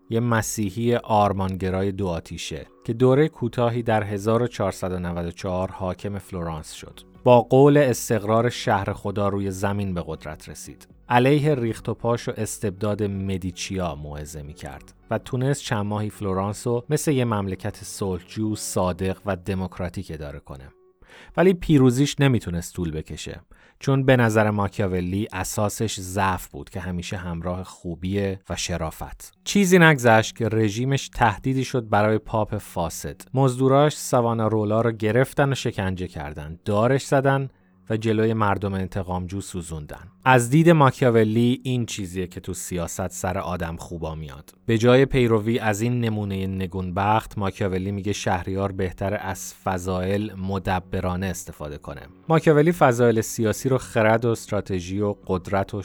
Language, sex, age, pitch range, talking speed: Persian, male, 30-49, 90-115 Hz, 135 wpm